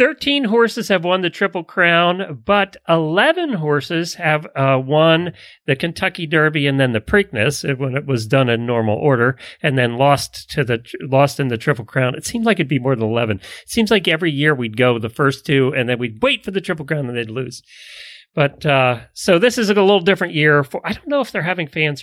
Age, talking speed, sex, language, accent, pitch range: 40-59, 230 wpm, male, English, American, 140-195 Hz